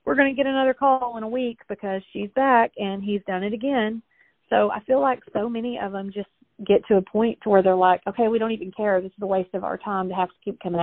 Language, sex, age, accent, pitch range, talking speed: English, female, 40-59, American, 190-225 Hz, 285 wpm